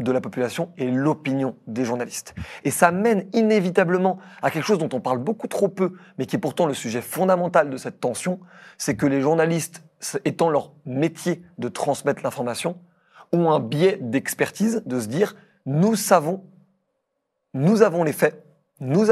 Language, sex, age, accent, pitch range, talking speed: French, male, 30-49, French, 135-185 Hz, 175 wpm